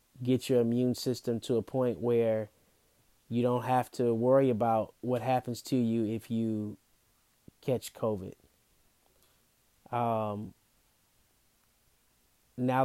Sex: male